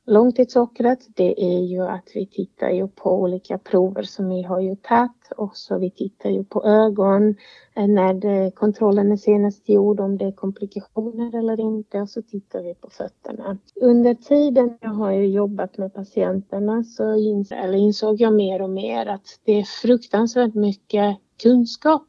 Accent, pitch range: native, 195-230 Hz